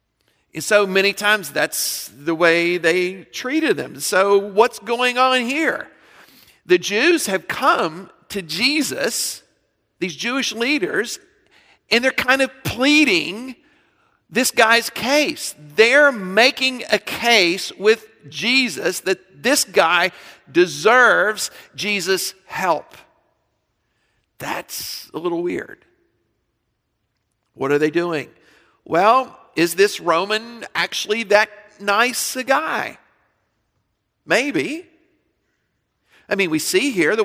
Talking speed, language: 110 wpm, English